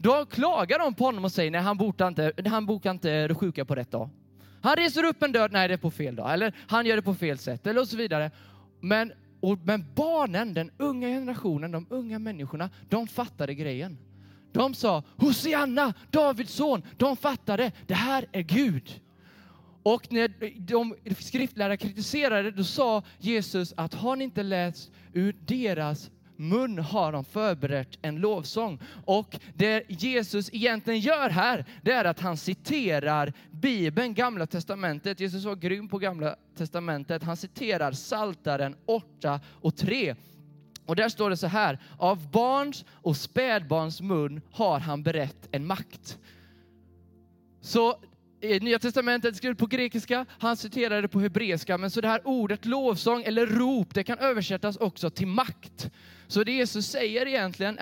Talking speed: 160 wpm